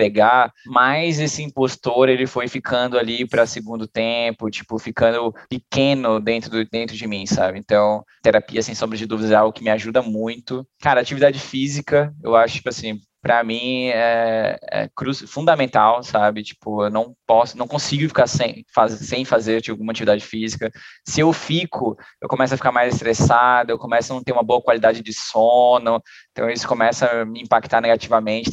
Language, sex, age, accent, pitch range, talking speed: Portuguese, male, 10-29, Brazilian, 110-135 Hz, 180 wpm